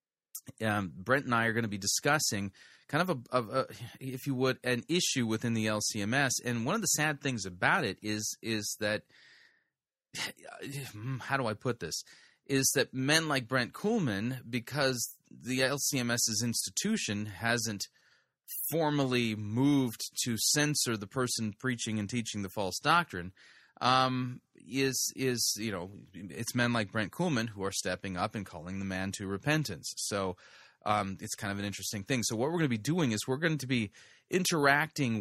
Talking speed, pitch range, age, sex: 175 wpm, 105-130 Hz, 30-49, male